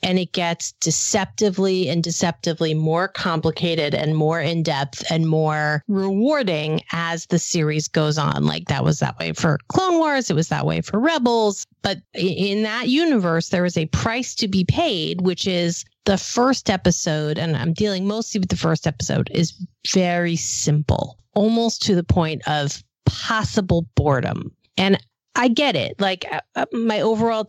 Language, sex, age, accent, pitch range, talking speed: English, female, 30-49, American, 155-215 Hz, 160 wpm